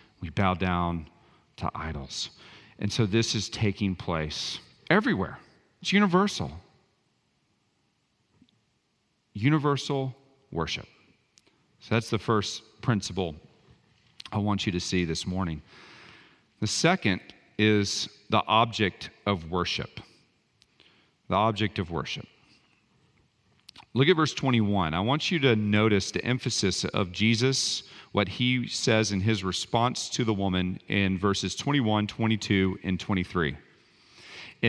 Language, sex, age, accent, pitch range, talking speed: English, male, 40-59, American, 95-115 Hz, 115 wpm